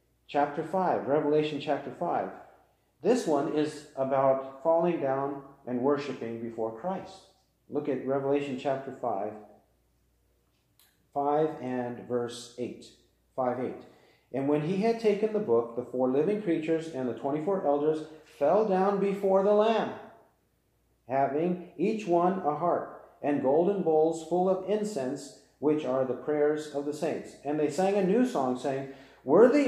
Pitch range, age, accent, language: 135-185 Hz, 40-59, American, English